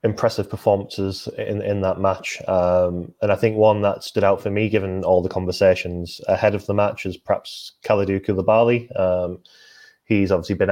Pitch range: 90-105 Hz